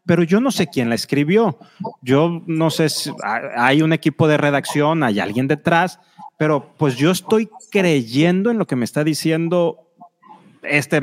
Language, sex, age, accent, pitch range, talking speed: Spanish, male, 30-49, Mexican, 135-185 Hz, 170 wpm